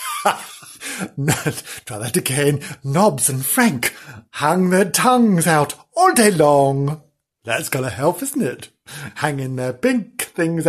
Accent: British